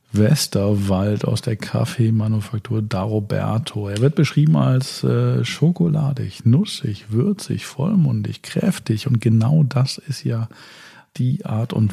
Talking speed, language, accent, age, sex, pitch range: 120 wpm, German, German, 40-59, male, 105-130 Hz